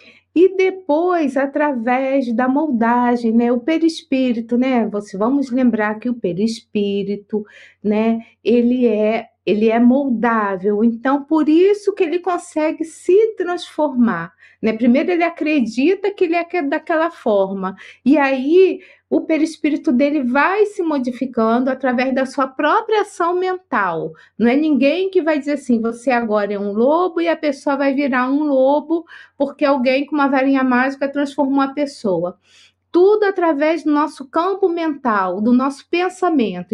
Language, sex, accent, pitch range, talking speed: Portuguese, female, Brazilian, 235-320 Hz, 145 wpm